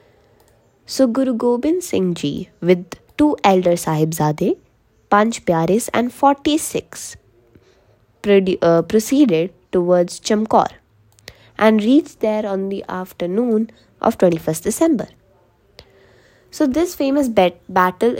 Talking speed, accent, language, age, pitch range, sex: 105 wpm, Indian, English, 20-39, 160-220 Hz, female